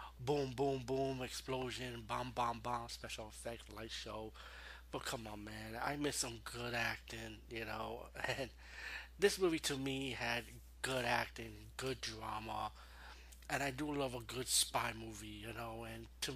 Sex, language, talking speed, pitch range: male, English, 160 wpm, 110-125 Hz